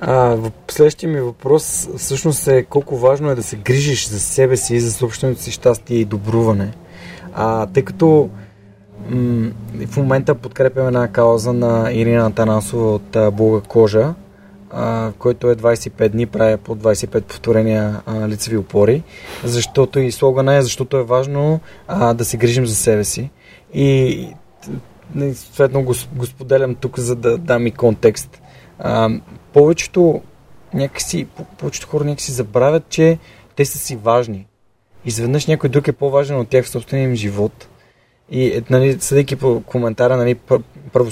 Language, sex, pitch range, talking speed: Bulgarian, male, 115-140 Hz, 155 wpm